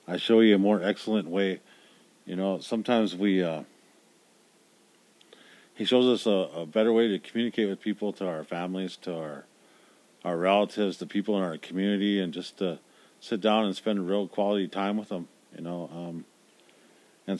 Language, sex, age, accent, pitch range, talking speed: English, male, 40-59, American, 90-105 Hz, 175 wpm